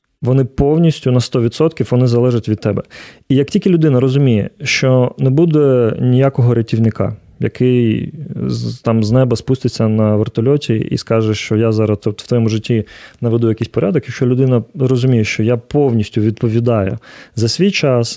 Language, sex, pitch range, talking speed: Ukrainian, male, 110-135 Hz, 155 wpm